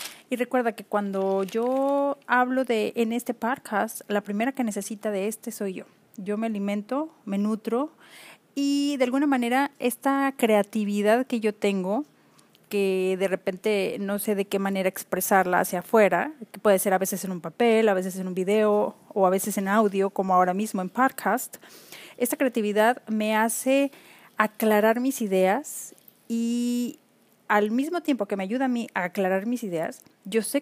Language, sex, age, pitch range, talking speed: Spanish, female, 30-49, 205-255 Hz, 170 wpm